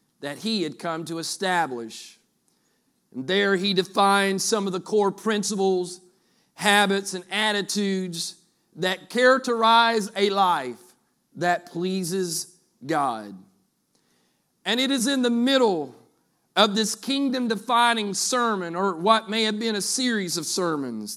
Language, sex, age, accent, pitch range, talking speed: English, male, 40-59, American, 180-225 Hz, 125 wpm